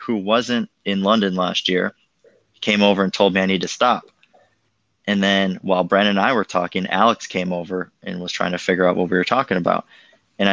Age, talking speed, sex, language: 20-39, 215 wpm, male, English